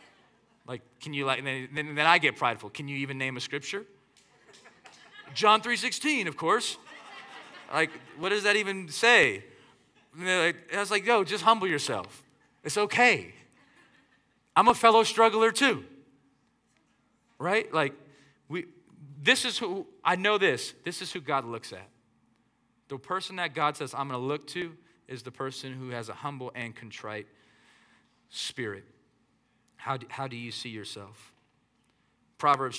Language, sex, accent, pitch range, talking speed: English, male, American, 130-190 Hz, 155 wpm